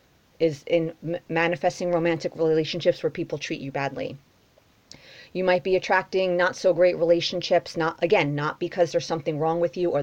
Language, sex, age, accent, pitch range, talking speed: English, female, 30-49, American, 160-175 Hz, 155 wpm